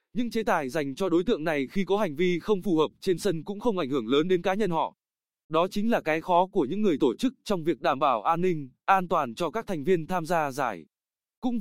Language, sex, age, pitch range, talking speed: Vietnamese, male, 20-39, 165-210 Hz, 270 wpm